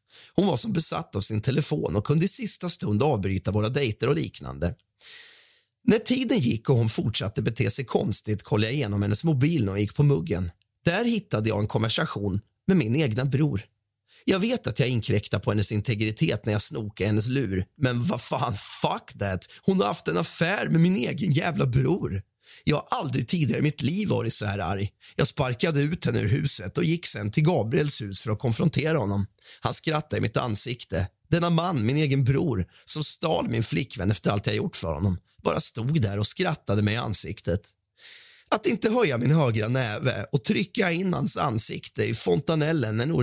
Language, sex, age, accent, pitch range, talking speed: Swedish, male, 30-49, native, 105-155 Hz, 200 wpm